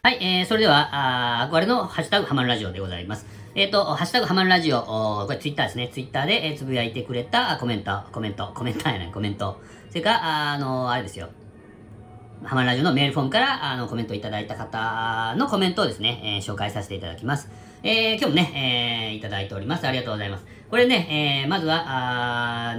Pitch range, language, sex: 105-170 Hz, Japanese, female